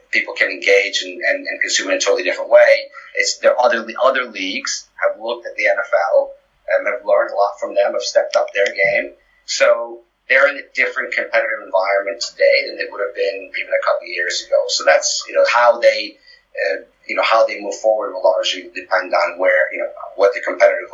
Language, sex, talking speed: English, male, 220 wpm